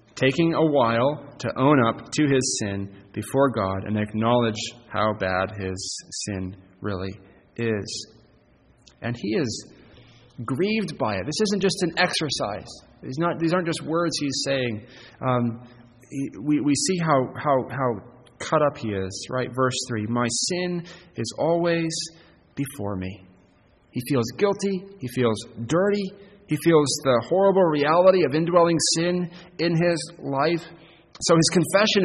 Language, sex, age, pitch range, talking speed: English, male, 30-49, 115-170 Hz, 145 wpm